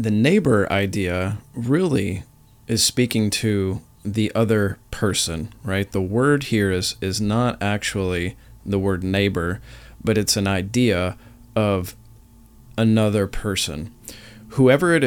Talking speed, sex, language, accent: 120 wpm, male, English, American